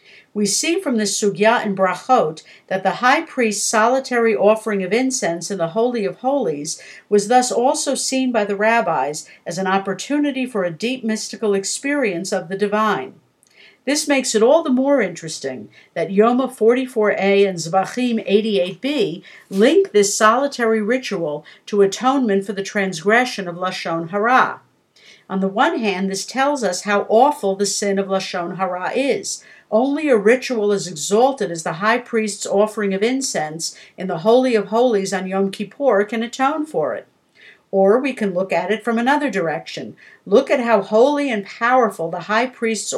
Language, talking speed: English, 170 wpm